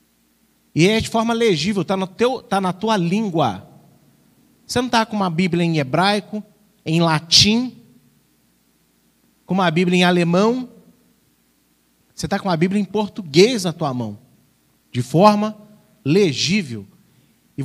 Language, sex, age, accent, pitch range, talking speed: Portuguese, male, 40-59, Brazilian, 130-205 Hz, 130 wpm